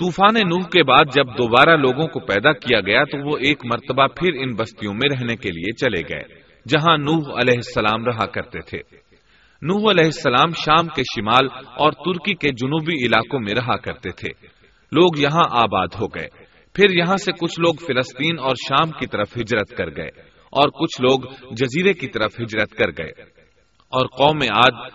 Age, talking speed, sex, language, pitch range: 30-49, 185 wpm, male, Urdu, 125-165 Hz